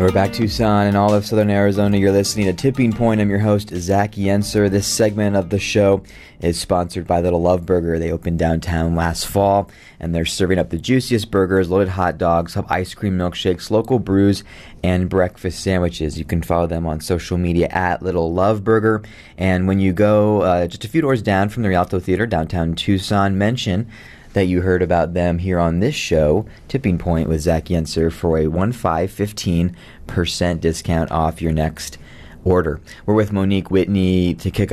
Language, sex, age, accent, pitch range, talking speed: English, male, 20-39, American, 85-100 Hz, 190 wpm